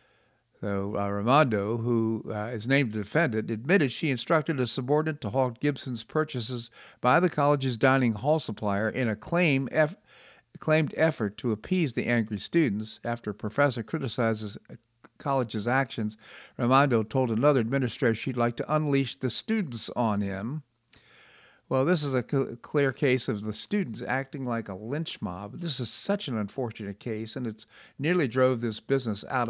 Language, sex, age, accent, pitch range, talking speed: English, male, 50-69, American, 110-140 Hz, 165 wpm